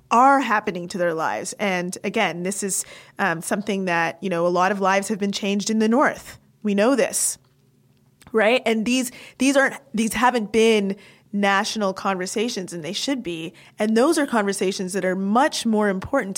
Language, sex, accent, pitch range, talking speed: English, female, American, 185-225 Hz, 185 wpm